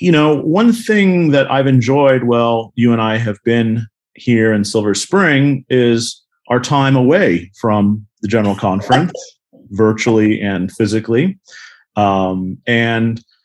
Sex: male